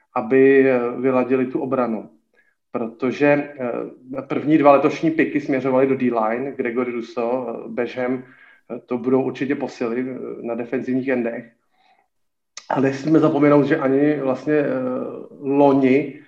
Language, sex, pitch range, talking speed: Slovak, male, 125-150 Hz, 105 wpm